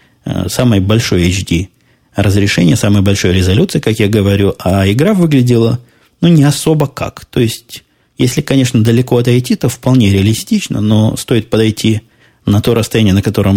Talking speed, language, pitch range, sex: 150 wpm, Russian, 95-115 Hz, male